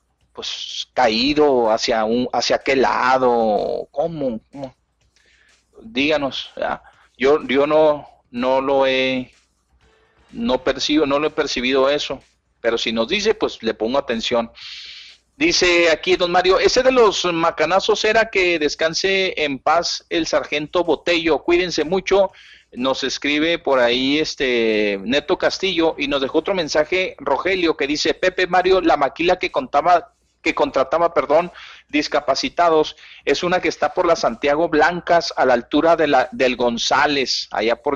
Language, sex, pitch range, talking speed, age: Spanish, male, 135-180 Hz, 145 wpm, 40-59